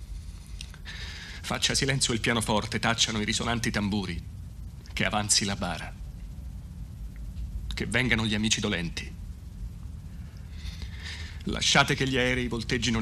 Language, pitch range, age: Italian, 80-105 Hz, 40-59